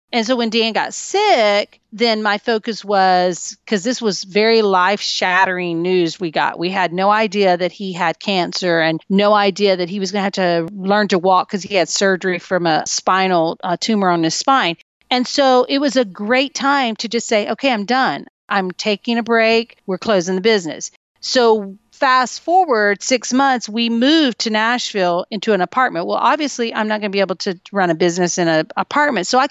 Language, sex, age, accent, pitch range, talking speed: English, female, 40-59, American, 190-255 Hz, 205 wpm